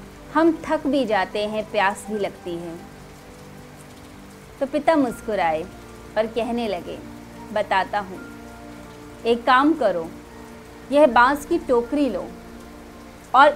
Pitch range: 190-285 Hz